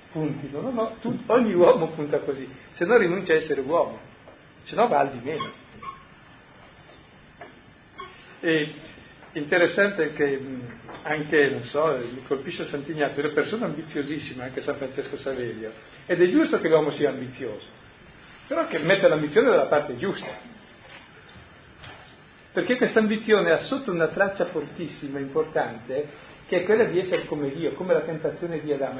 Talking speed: 155 wpm